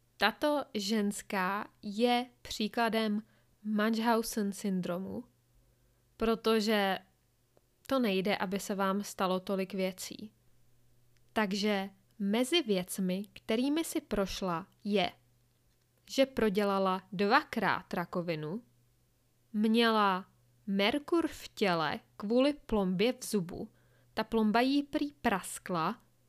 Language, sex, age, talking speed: Czech, female, 20-39, 90 wpm